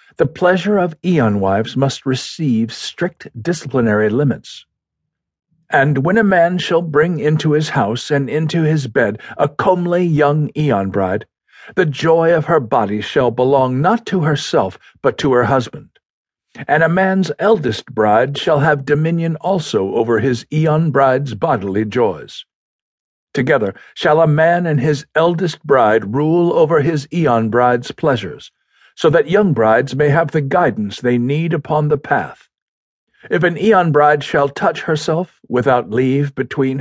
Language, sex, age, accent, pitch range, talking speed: English, male, 50-69, American, 125-165 Hz, 145 wpm